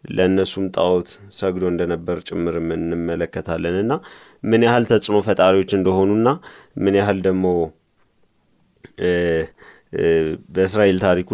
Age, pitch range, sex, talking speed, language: 30-49, 90-100 Hz, male, 95 wpm, Amharic